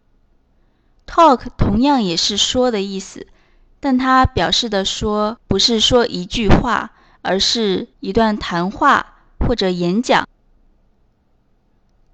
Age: 20-39